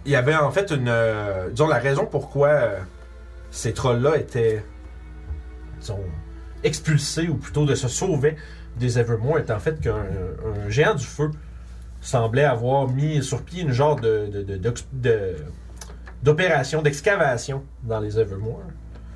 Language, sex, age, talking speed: French, male, 30-49, 150 wpm